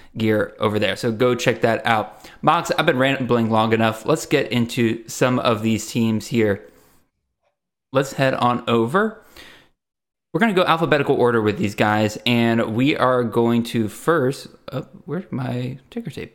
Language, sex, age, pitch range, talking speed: English, male, 20-39, 120-165 Hz, 165 wpm